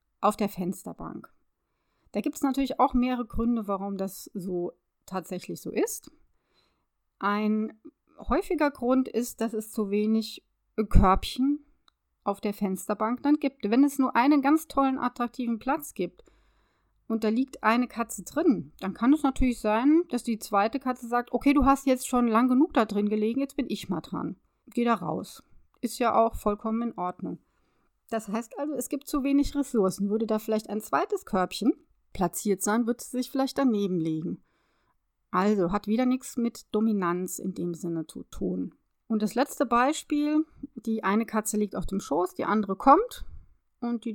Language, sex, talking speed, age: German, female, 175 wpm, 30-49